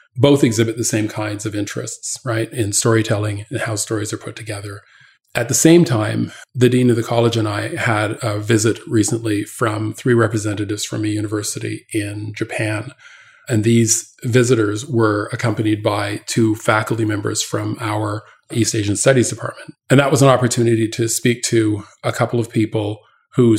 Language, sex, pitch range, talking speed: English, male, 105-115 Hz, 170 wpm